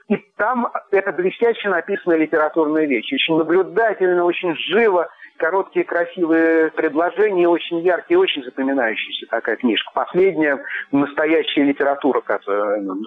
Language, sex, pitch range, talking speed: Russian, male, 155-195 Hz, 110 wpm